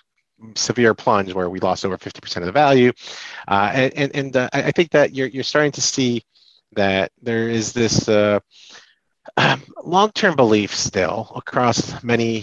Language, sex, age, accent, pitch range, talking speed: English, male, 30-49, American, 95-125 Hz, 170 wpm